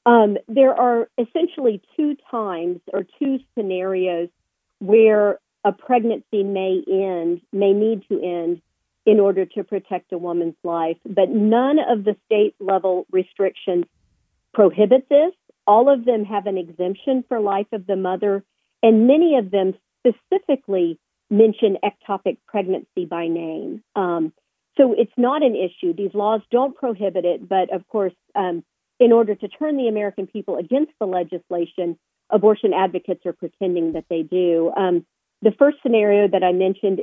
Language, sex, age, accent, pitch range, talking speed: English, female, 50-69, American, 185-230 Hz, 150 wpm